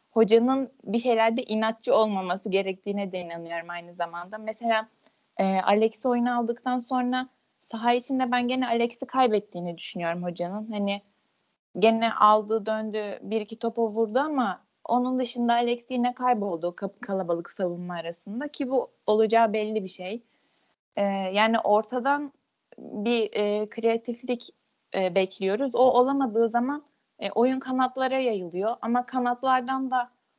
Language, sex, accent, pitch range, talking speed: Turkish, female, native, 205-245 Hz, 130 wpm